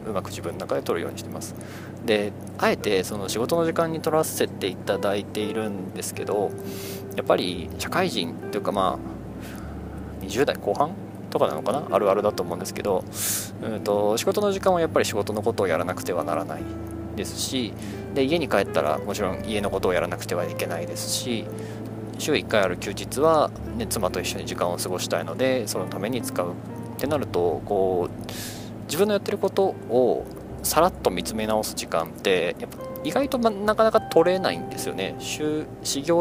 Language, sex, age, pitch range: Japanese, male, 20-39, 100-130 Hz